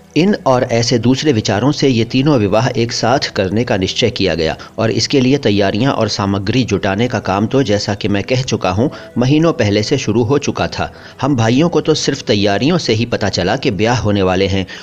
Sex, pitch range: male, 100-130 Hz